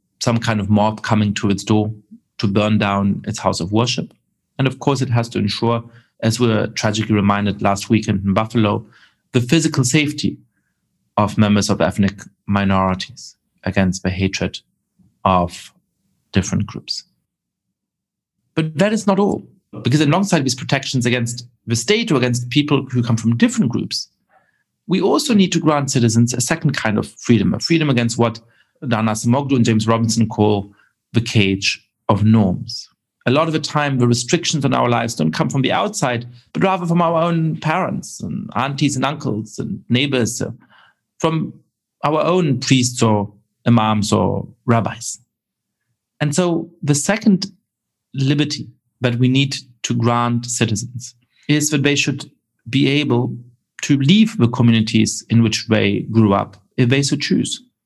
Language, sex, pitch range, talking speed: English, male, 110-145 Hz, 160 wpm